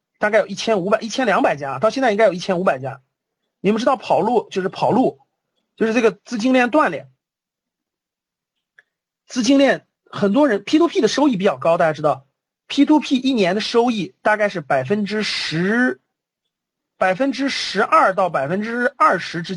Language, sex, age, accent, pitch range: Chinese, male, 40-59, native, 170-255 Hz